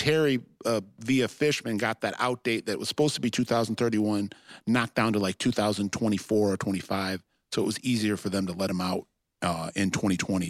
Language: English